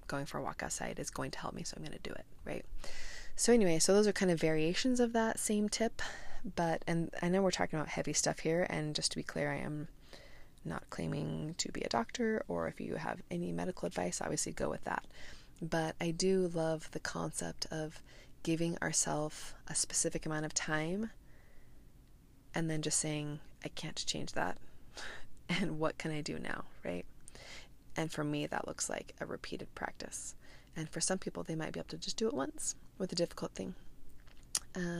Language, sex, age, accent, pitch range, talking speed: English, female, 20-39, American, 150-185 Hz, 205 wpm